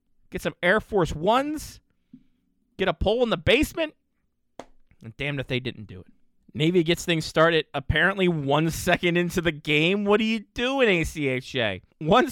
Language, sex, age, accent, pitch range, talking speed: English, male, 20-39, American, 125-160 Hz, 170 wpm